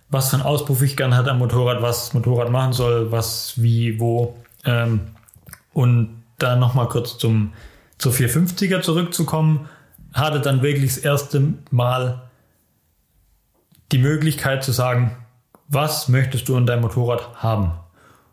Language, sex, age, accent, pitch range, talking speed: German, male, 30-49, German, 115-140 Hz, 140 wpm